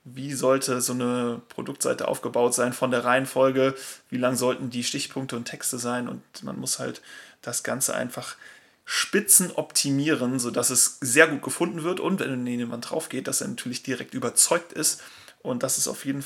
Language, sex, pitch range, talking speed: German, male, 125-135 Hz, 180 wpm